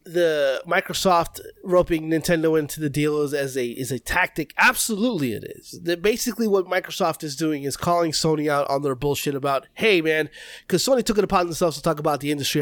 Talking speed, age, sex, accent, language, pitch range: 205 wpm, 20-39, male, American, English, 155-205 Hz